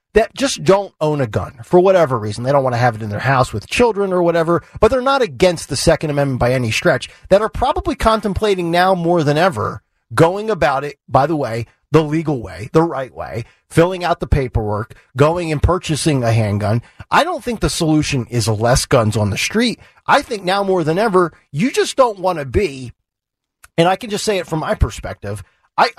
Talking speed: 215 wpm